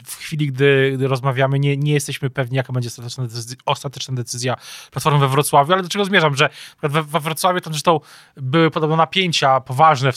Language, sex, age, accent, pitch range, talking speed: Polish, male, 20-39, native, 120-140 Hz, 175 wpm